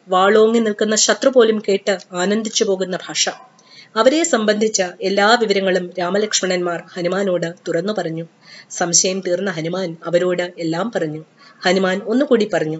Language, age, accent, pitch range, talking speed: English, 30-49, Indian, 180-205 Hz, 115 wpm